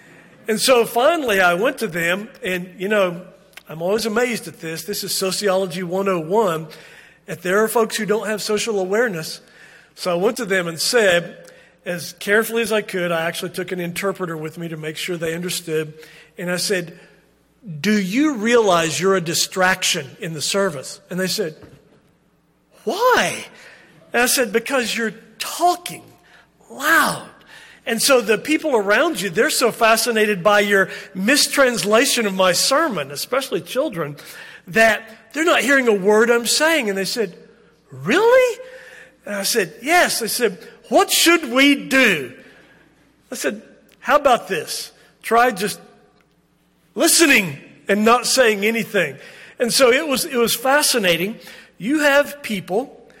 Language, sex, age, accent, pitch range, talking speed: English, male, 40-59, American, 185-245 Hz, 155 wpm